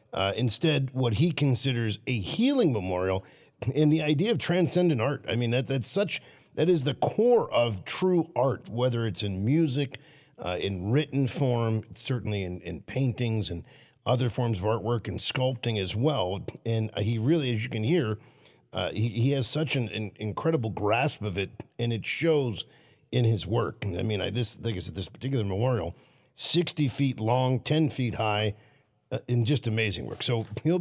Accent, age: American, 50-69